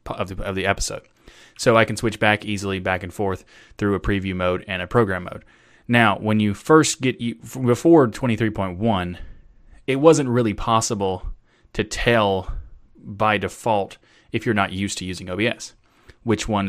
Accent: American